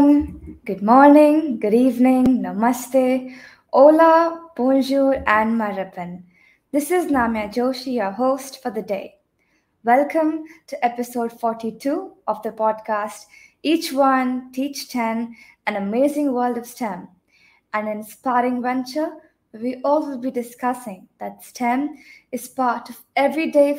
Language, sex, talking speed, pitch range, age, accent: English, female, 125 wpm, 220-275 Hz, 20-39, Indian